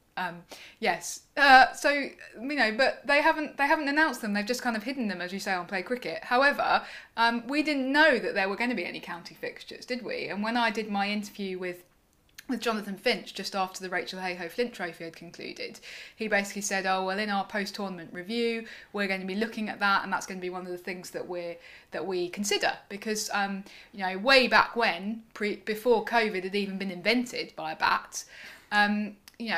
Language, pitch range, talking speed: English, 185-230 Hz, 220 wpm